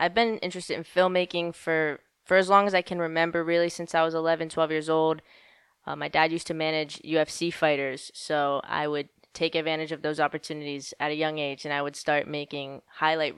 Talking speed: 210 wpm